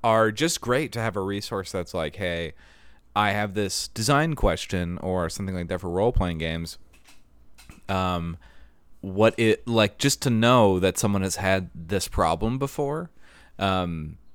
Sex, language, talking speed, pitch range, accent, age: male, English, 155 wpm, 80-105 Hz, American, 30-49